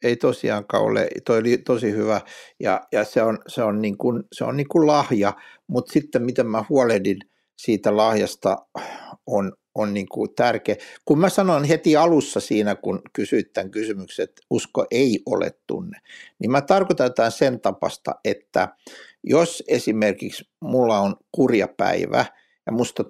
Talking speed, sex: 160 wpm, male